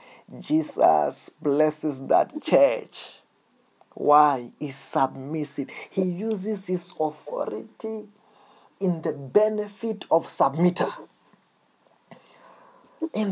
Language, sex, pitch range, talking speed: English, male, 140-210 Hz, 75 wpm